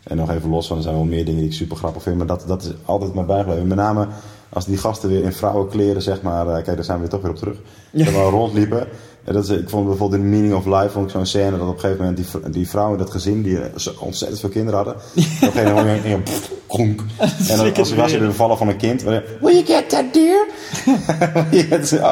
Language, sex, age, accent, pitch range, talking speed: Dutch, male, 30-49, Dutch, 95-110 Hz, 280 wpm